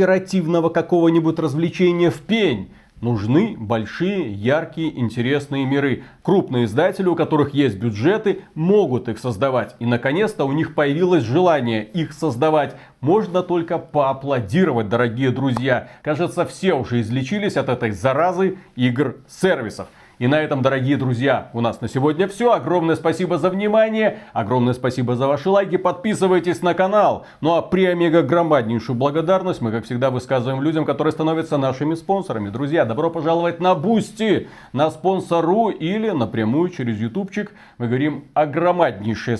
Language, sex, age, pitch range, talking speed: Russian, male, 40-59, 120-175 Hz, 140 wpm